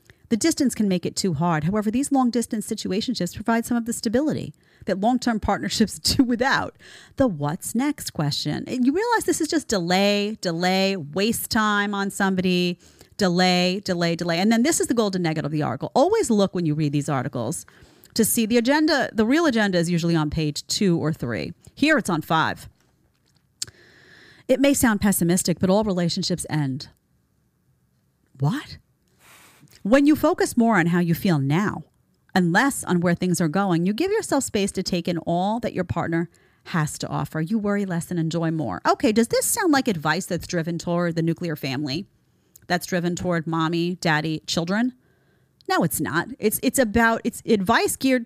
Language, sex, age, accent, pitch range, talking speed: English, female, 40-59, American, 165-230 Hz, 185 wpm